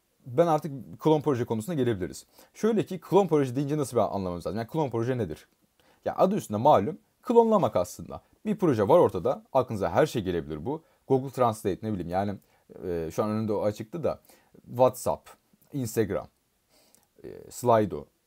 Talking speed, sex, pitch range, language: 170 wpm, male, 105-155 Hz, Turkish